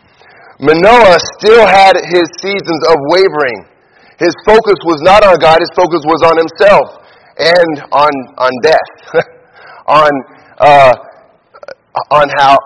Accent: American